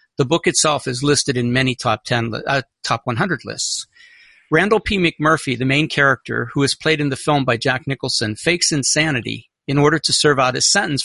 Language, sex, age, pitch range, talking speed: English, male, 50-69, 125-160 Hz, 200 wpm